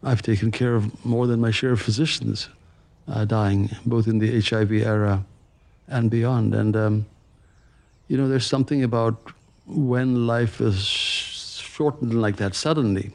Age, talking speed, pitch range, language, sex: 50-69, 150 wpm, 105-125 Hz, English, male